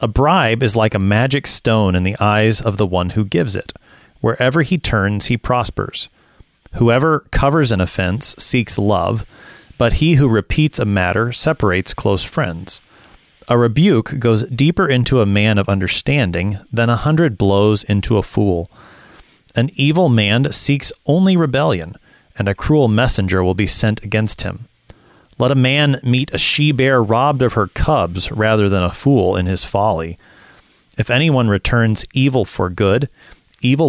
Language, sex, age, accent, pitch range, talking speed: English, male, 30-49, American, 100-130 Hz, 160 wpm